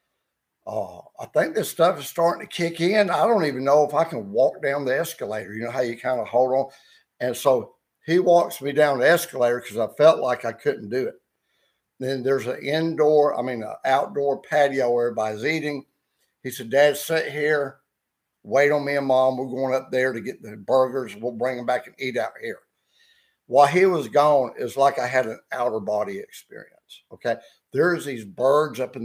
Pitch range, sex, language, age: 130-175 Hz, male, English, 60-79